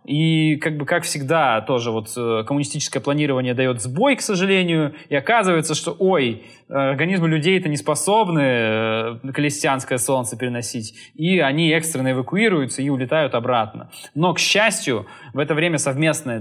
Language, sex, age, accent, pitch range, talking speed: Russian, male, 20-39, native, 115-150 Hz, 150 wpm